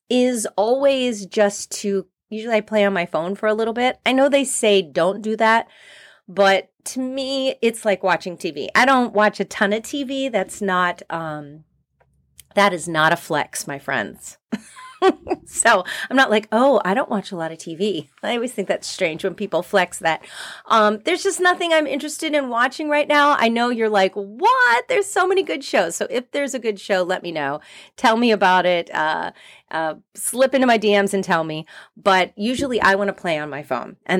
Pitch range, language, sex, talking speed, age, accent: 185-255 Hz, English, female, 205 wpm, 30-49, American